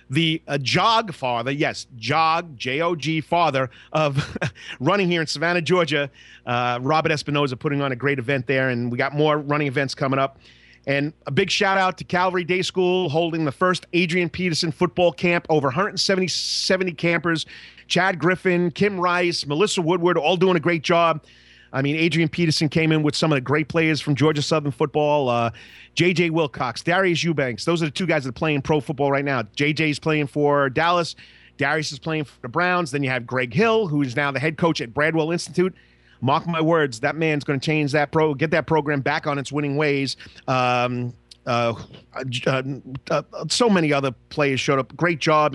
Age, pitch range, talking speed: 40-59, 135-170 Hz, 195 wpm